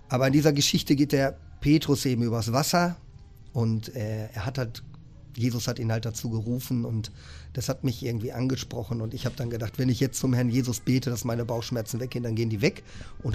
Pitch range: 115-135 Hz